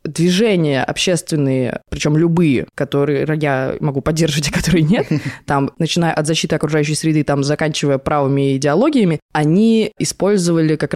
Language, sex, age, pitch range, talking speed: Russian, female, 20-39, 145-180 Hz, 130 wpm